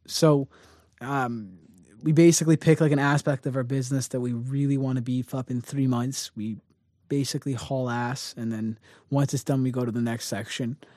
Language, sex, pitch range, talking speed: English, male, 125-150 Hz, 195 wpm